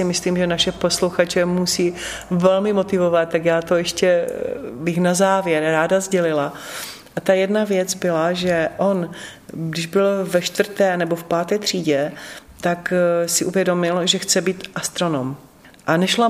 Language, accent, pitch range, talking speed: Czech, native, 165-195 Hz, 145 wpm